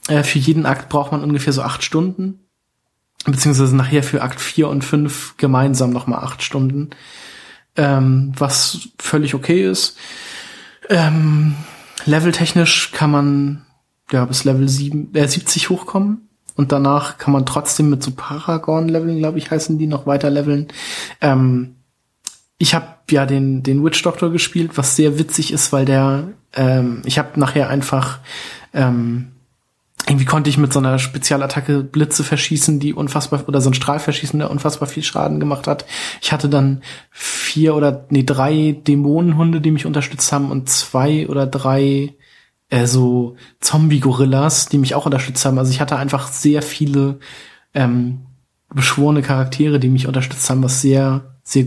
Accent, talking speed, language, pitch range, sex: German, 155 wpm, German, 135-150 Hz, male